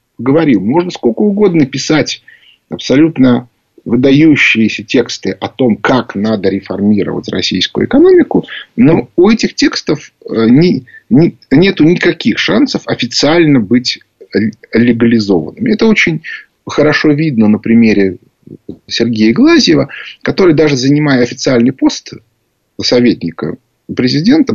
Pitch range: 115-190 Hz